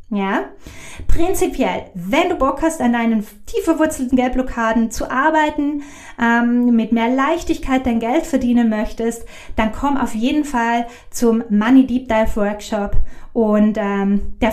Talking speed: 140 wpm